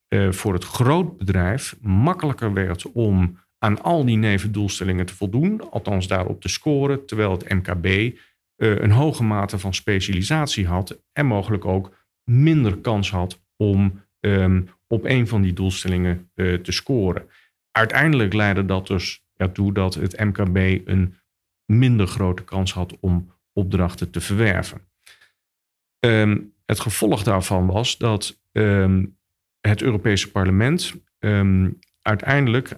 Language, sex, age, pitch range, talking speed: Dutch, male, 50-69, 95-110 Hz, 125 wpm